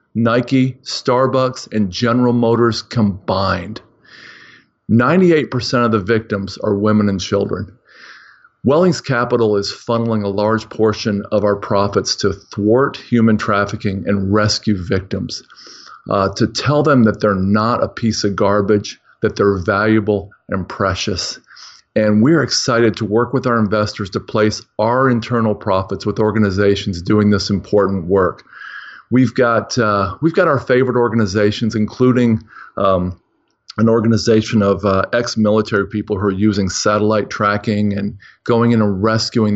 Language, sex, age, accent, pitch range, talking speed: English, male, 40-59, American, 105-120 Hz, 140 wpm